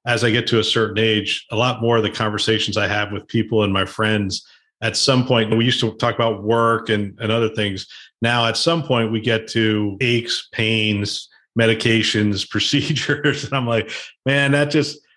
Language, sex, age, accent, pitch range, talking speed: English, male, 40-59, American, 105-125 Hz, 200 wpm